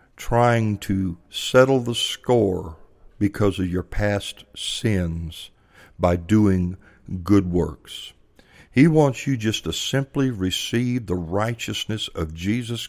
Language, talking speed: English, 115 wpm